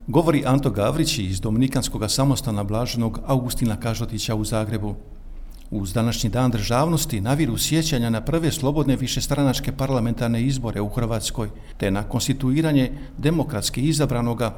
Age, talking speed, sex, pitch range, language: 50-69, 125 wpm, male, 115-140 Hz, Croatian